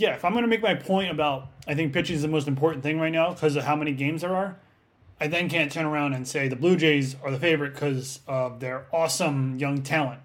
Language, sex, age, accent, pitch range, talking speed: English, male, 30-49, American, 130-160 Hz, 265 wpm